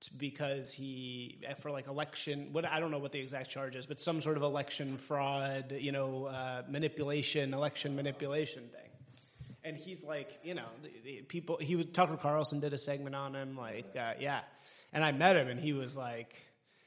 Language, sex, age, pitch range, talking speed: English, male, 30-49, 135-165 Hz, 195 wpm